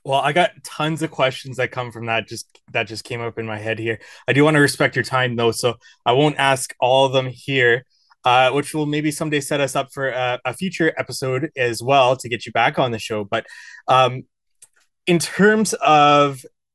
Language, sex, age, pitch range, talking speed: English, male, 20-39, 125-155 Hz, 220 wpm